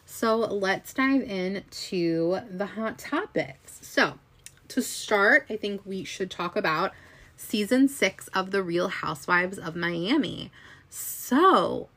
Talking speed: 130 wpm